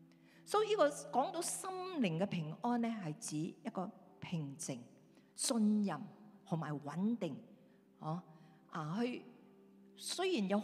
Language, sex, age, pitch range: Chinese, female, 50-69, 155-215 Hz